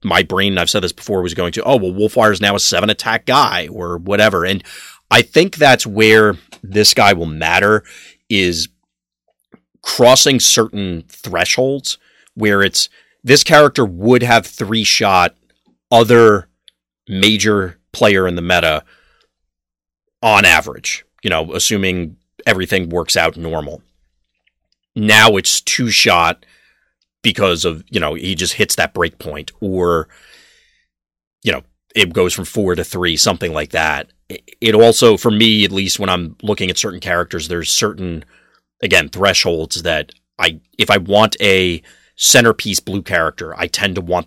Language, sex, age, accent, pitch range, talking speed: English, male, 30-49, American, 85-105 Hz, 150 wpm